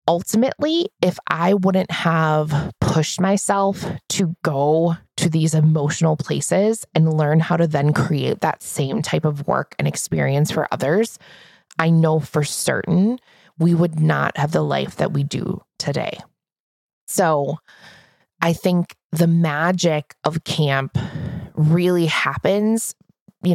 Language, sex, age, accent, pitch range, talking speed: English, female, 20-39, American, 160-190 Hz, 135 wpm